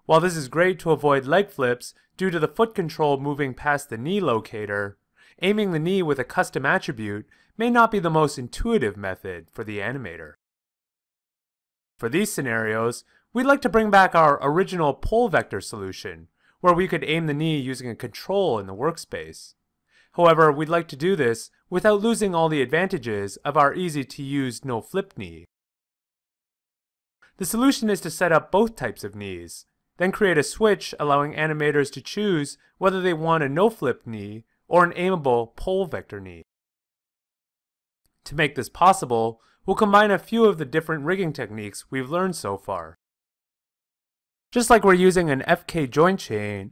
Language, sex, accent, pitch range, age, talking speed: English, male, American, 115-185 Hz, 30-49, 170 wpm